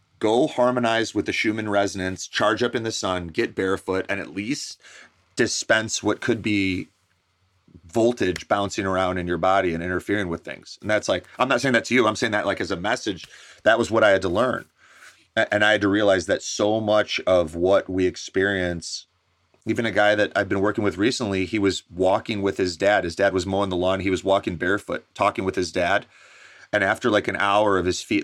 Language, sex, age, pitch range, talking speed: English, male, 30-49, 90-105 Hz, 215 wpm